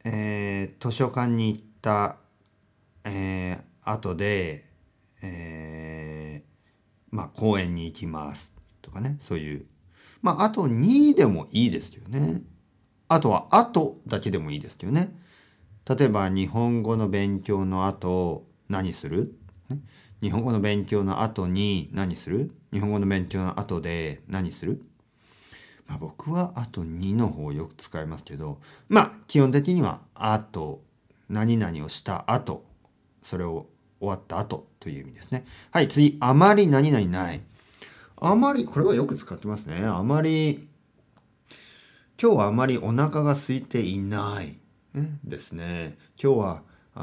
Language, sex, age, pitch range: Japanese, male, 40-59, 90-125 Hz